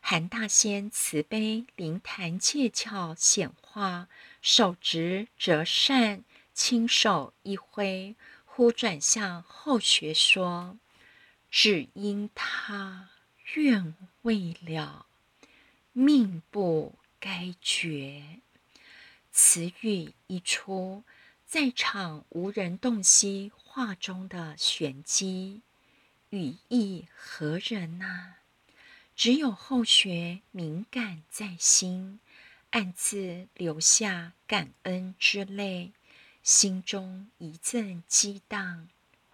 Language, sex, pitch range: Chinese, female, 175-230 Hz